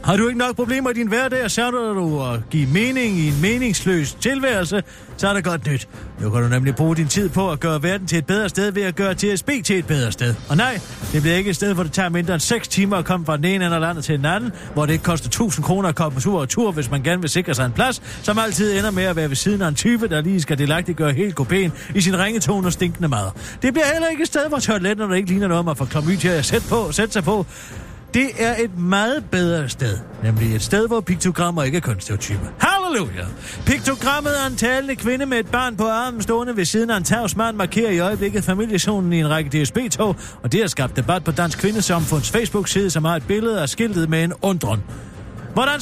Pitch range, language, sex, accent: 155-215 Hz, Danish, male, native